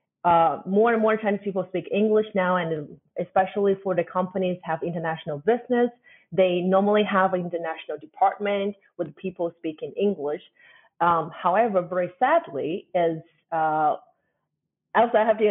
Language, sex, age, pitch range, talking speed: English, female, 30-49, 170-210 Hz, 135 wpm